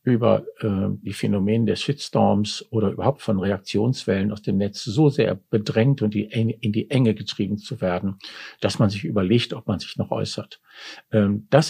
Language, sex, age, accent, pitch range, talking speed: German, male, 50-69, German, 105-125 Hz, 175 wpm